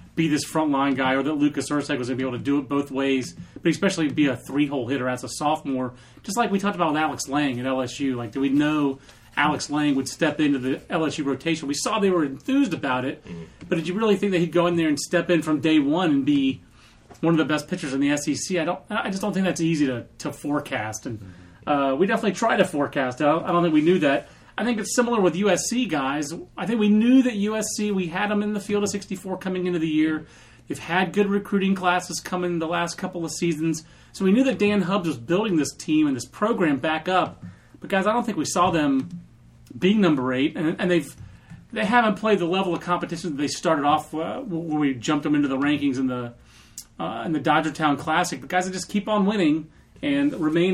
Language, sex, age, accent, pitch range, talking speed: English, male, 30-49, American, 140-185 Hz, 245 wpm